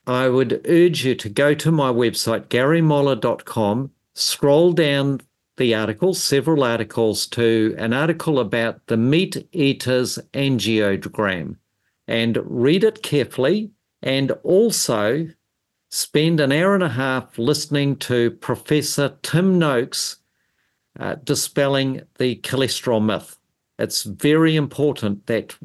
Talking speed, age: 115 wpm, 50-69